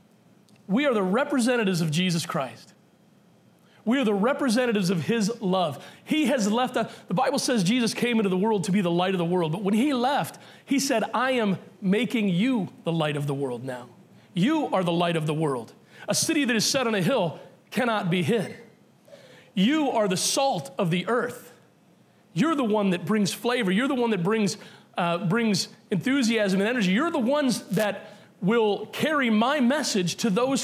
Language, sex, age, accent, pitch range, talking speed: English, male, 40-59, American, 185-235 Hz, 195 wpm